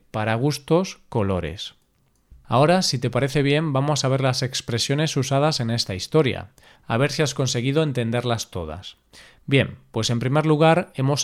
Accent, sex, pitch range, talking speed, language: Spanish, male, 115-150 Hz, 160 wpm, Spanish